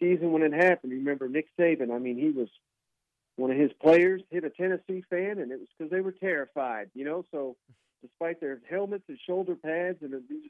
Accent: American